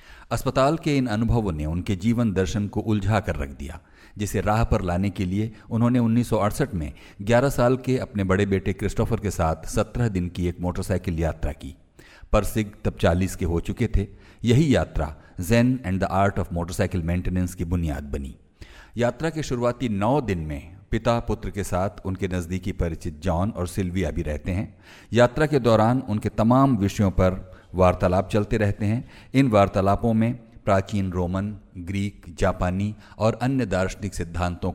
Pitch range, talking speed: 90-115 Hz, 170 wpm